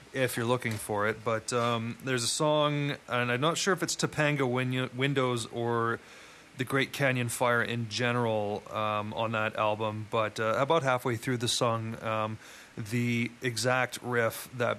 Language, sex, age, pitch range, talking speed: English, male, 30-49, 110-125 Hz, 165 wpm